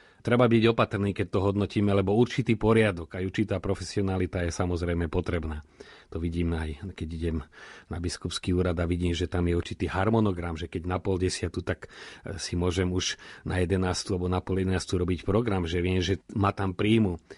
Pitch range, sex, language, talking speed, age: 90-110 Hz, male, Slovak, 180 wpm, 40-59